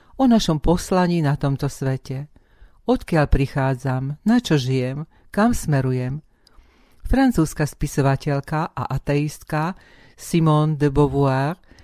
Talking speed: 100 wpm